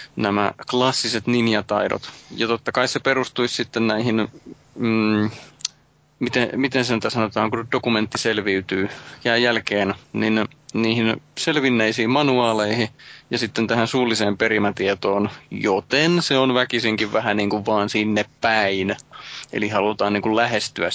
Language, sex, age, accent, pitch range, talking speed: Finnish, male, 30-49, native, 105-125 Hz, 130 wpm